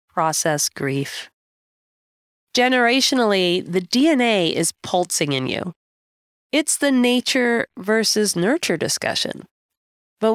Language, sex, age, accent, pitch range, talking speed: English, female, 30-49, American, 165-245 Hz, 95 wpm